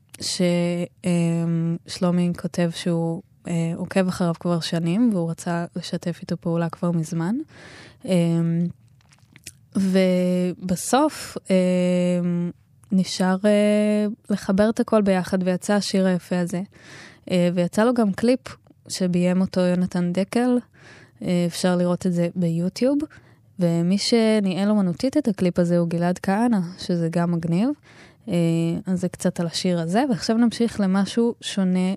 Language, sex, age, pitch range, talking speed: Hebrew, female, 20-39, 170-200 Hz, 125 wpm